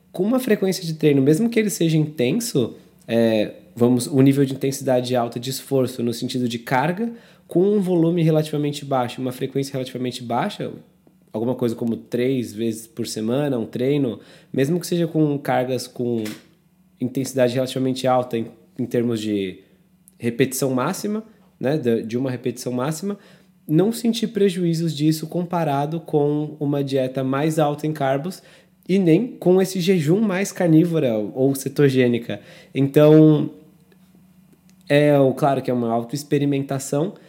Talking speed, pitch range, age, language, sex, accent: 140 wpm, 125-165 Hz, 20-39, Portuguese, male, Brazilian